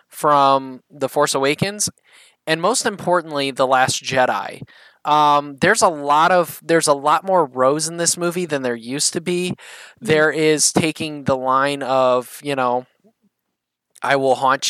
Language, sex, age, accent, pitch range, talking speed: English, male, 20-39, American, 130-155 Hz, 160 wpm